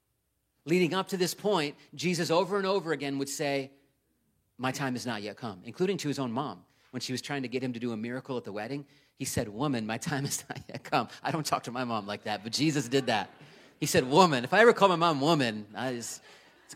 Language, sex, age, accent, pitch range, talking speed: English, male, 30-49, American, 130-175 Hz, 245 wpm